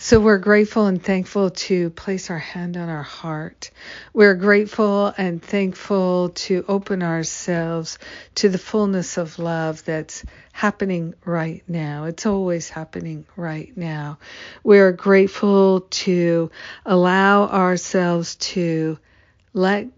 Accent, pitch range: American, 165-190 Hz